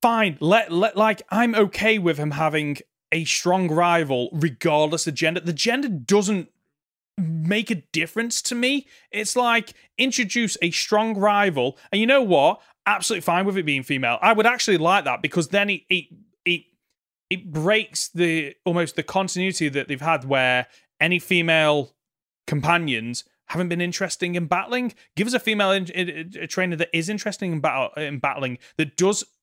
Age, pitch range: 30-49, 150-195 Hz